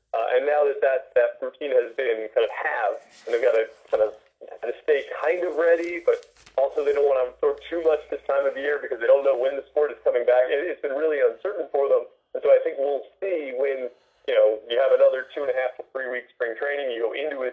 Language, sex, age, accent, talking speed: English, male, 30-49, American, 245 wpm